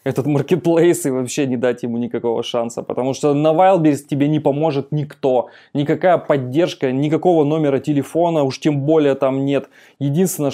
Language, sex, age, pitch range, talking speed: Russian, male, 20-39, 125-145 Hz, 160 wpm